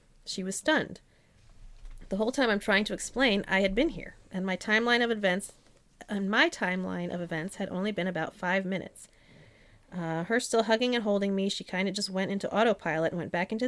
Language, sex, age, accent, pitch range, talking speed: English, female, 30-49, American, 175-220 Hz, 210 wpm